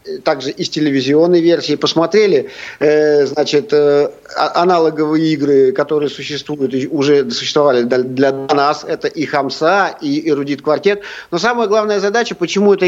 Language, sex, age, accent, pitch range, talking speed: Russian, male, 50-69, native, 155-200 Hz, 125 wpm